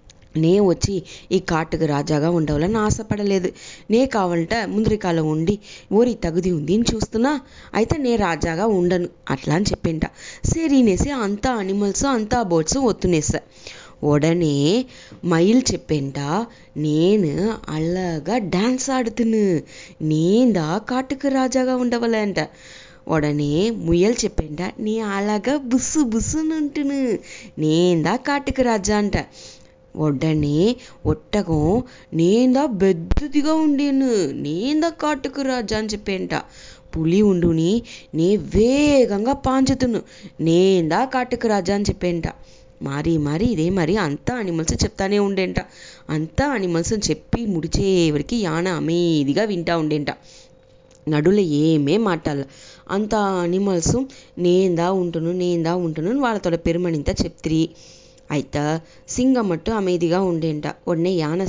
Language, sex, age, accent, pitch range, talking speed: English, female, 20-39, Indian, 165-230 Hz, 100 wpm